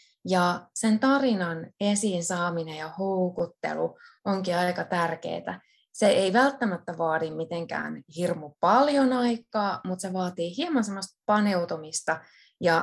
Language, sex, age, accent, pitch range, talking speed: Finnish, female, 20-39, native, 170-220 Hz, 110 wpm